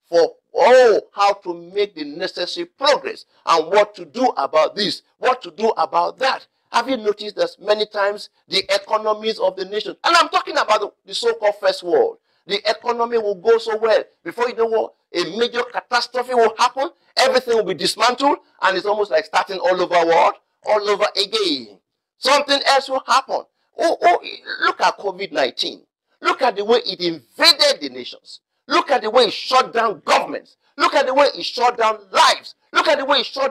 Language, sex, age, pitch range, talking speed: English, male, 50-69, 185-280 Hz, 195 wpm